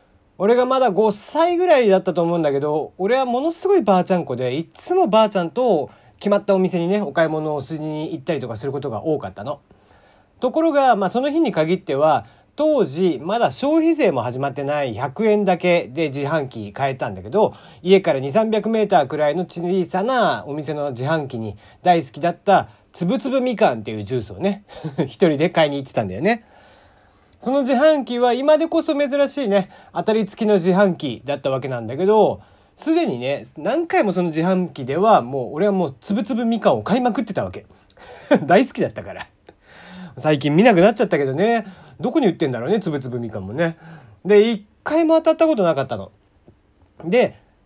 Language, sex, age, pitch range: Japanese, male, 40-59, 145-245 Hz